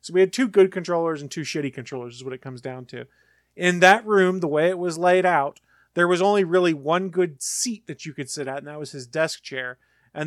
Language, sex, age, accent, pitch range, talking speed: English, male, 30-49, American, 140-175 Hz, 255 wpm